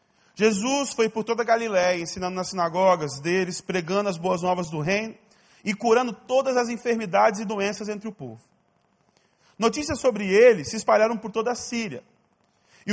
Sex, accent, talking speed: male, Brazilian, 165 wpm